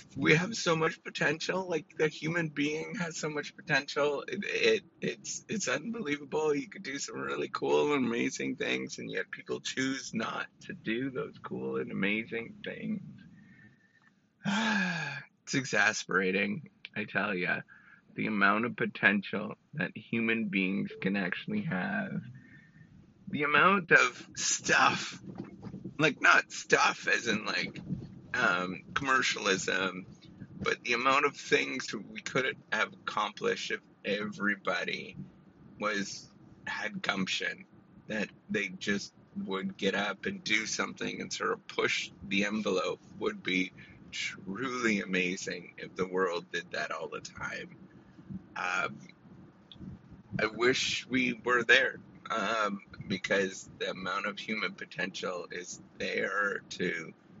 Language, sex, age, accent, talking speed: English, male, 30-49, American, 130 wpm